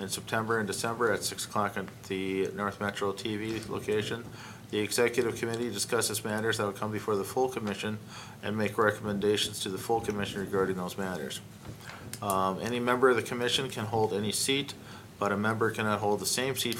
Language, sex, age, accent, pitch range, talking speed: English, male, 50-69, American, 100-115 Hz, 190 wpm